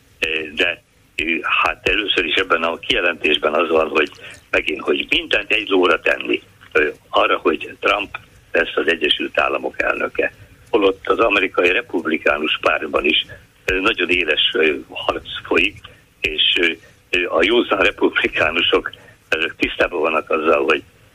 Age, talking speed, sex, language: 60-79, 120 wpm, male, Hungarian